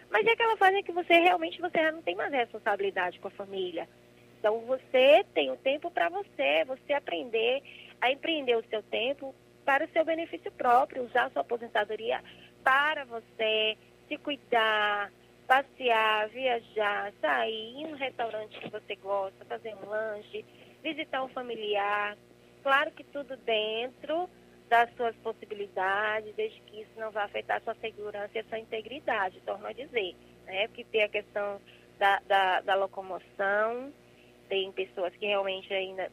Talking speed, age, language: 160 wpm, 20-39, Portuguese